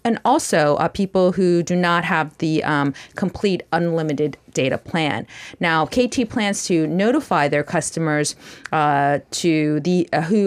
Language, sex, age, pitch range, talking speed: English, female, 30-49, 150-190 Hz, 150 wpm